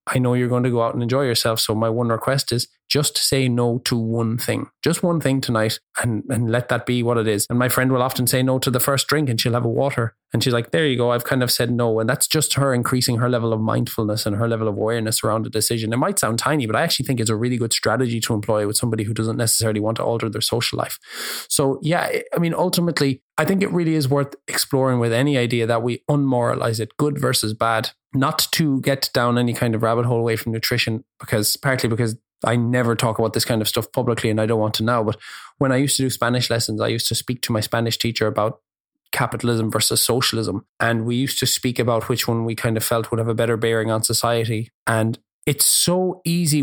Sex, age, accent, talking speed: male, 20-39, Irish, 255 wpm